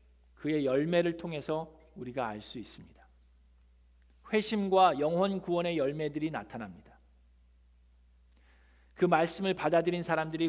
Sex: male